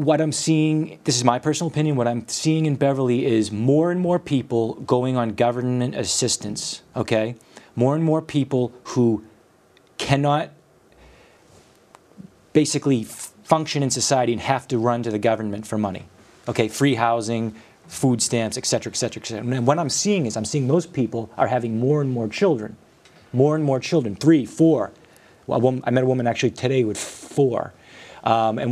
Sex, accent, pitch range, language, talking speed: male, American, 110-135 Hz, English, 175 wpm